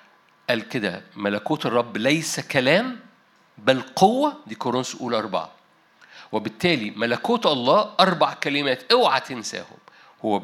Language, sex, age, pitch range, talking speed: Arabic, male, 50-69, 140-190 Hz, 115 wpm